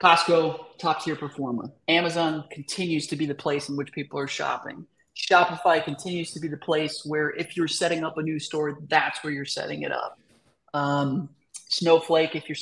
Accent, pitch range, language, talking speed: American, 145-175 Hz, English, 180 wpm